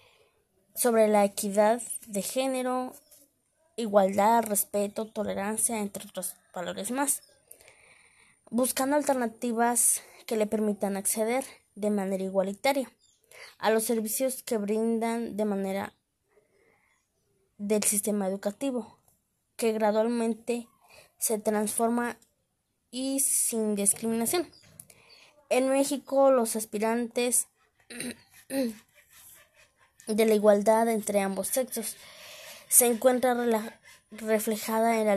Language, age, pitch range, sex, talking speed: Spanish, 20-39, 210-250 Hz, female, 90 wpm